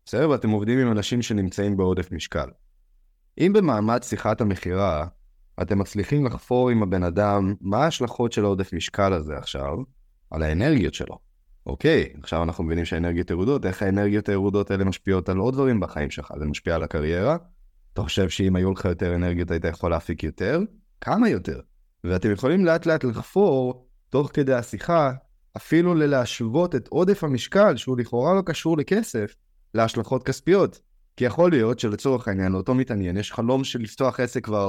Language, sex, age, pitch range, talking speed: Hebrew, male, 20-39, 95-130 Hz, 165 wpm